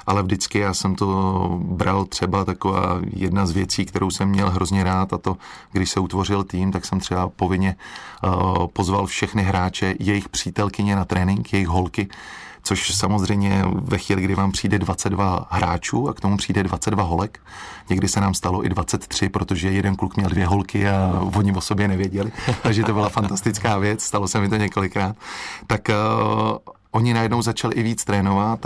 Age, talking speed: 30-49, 175 wpm